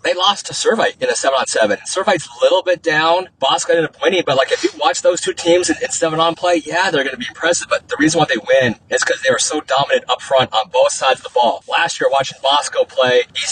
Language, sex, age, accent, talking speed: English, male, 30-49, American, 265 wpm